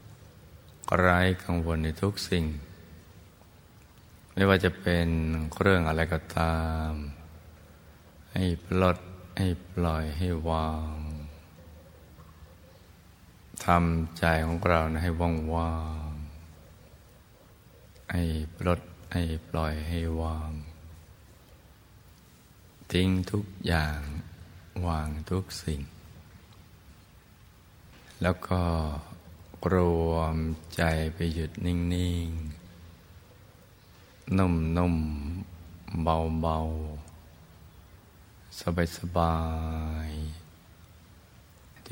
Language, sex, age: Thai, male, 20-39